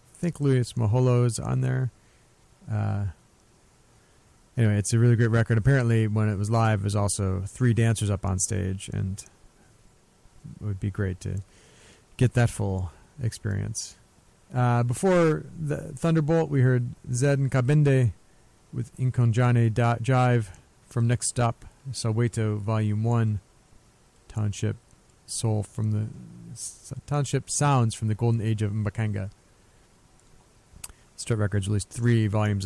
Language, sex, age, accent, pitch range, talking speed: English, male, 40-59, American, 105-130 Hz, 135 wpm